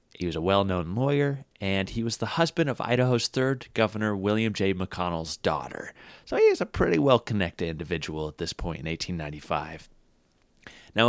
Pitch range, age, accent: 85-115 Hz, 30-49, American